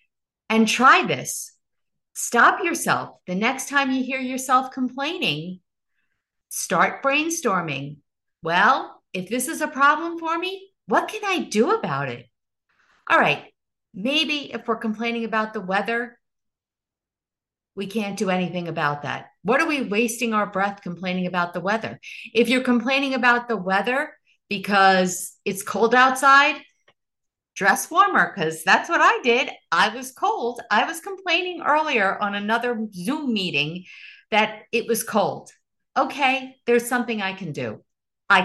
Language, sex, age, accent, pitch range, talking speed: English, female, 50-69, American, 190-280 Hz, 145 wpm